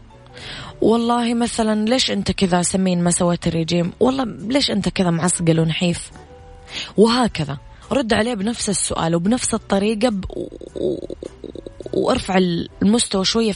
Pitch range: 160-220 Hz